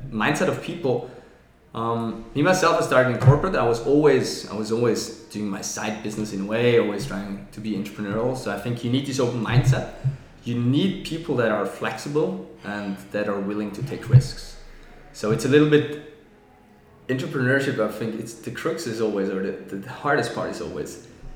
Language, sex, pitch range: English, male, 105-130 Hz